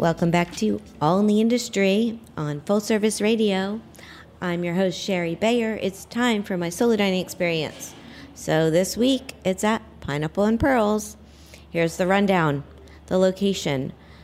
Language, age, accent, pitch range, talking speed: English, 50-69, American, 150-210 Hz, 150 wpm